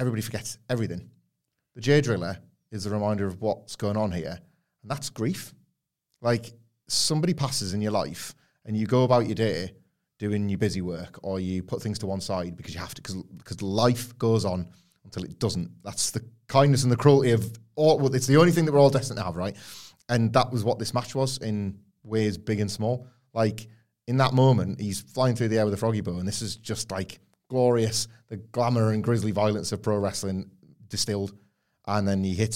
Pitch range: 95-120 Hz